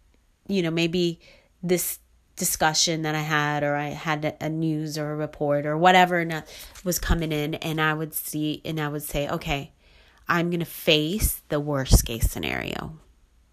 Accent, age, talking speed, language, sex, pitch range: American, 30-49, 170 wpm, English, female, 145-175 Hz